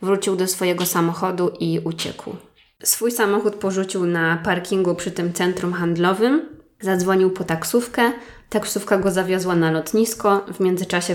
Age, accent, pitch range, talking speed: 20-39, native, 175-200 Hz, 135 wpm